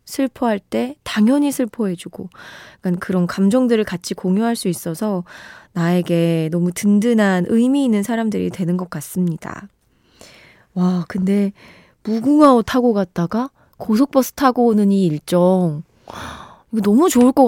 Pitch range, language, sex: 180-245 Hz, Korean, female